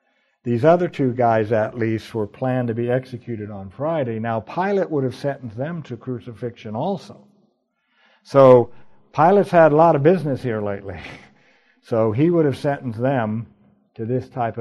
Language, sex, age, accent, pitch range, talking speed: English, male, 60-79, American, 110-150 Hz, 165 wpm